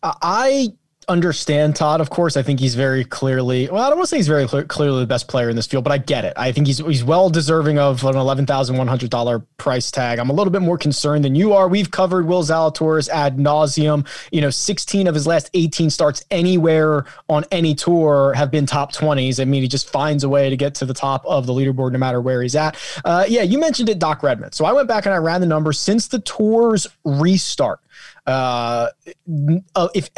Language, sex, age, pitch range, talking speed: English, male, 20-39, 145-195 Hz, 225 wpm